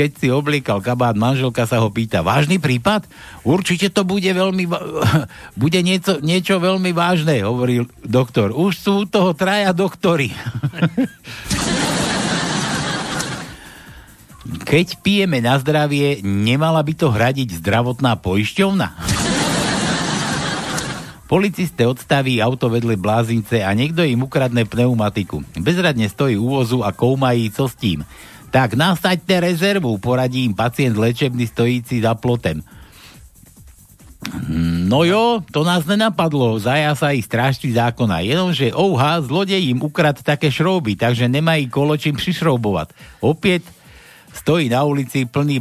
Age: 60-79